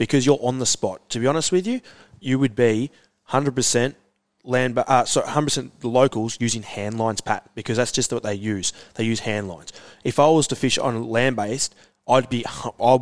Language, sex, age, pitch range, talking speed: English, male, 20-39, 110-130 Hz, 200 wpm